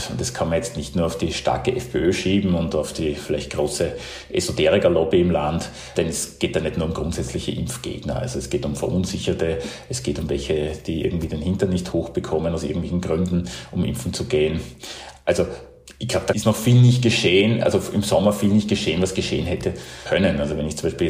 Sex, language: male, German